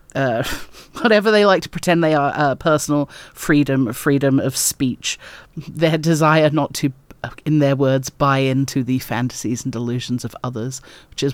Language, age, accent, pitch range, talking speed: English, 40-59, British, 140-190 Hz, 165 wpm